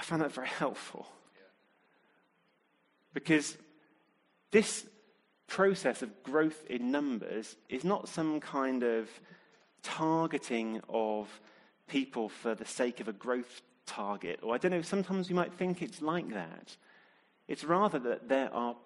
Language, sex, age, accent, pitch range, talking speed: English, male, 30-49, British, 120-165 Hz, 135 wpm